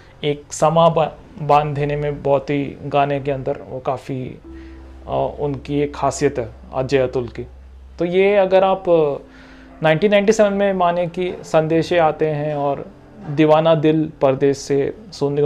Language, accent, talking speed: English, Indian, 130 wpm